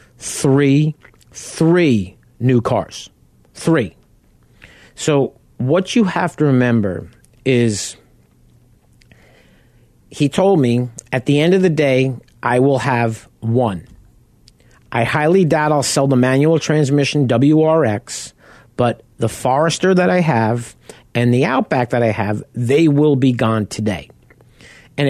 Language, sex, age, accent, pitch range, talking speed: English, male, 50-69, American, 115-145 Hz, 125 wpm